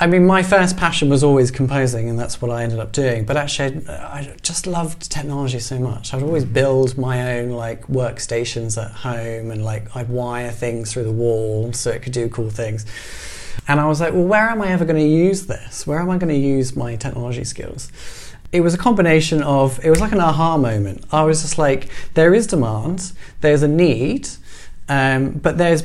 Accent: British